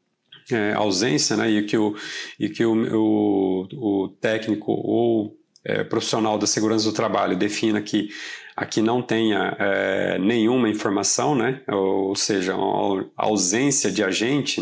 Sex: male